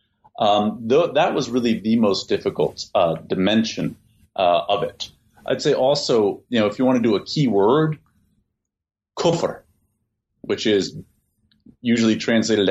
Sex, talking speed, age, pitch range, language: male, 140 wpm, 40-59, 105-130 Hz, English